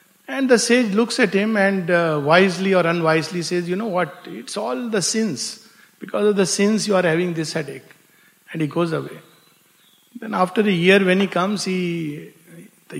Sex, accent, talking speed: male, Indian, 190 wpm